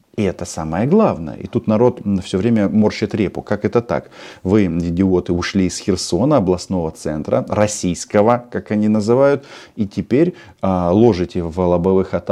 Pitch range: 90-125 Hz